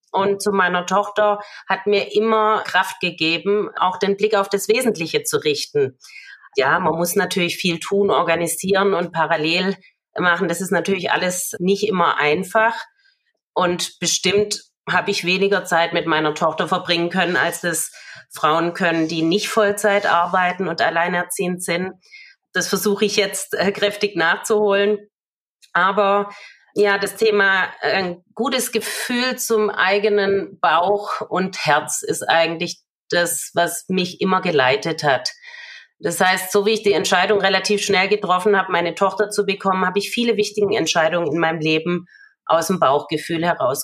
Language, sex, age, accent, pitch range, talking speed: German, female, 30-49, German, 170-205 Hz, 150 wpm